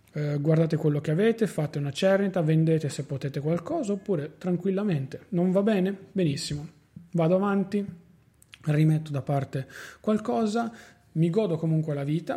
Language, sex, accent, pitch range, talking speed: Italian, male, native, 140-165 Hz, 135 wpm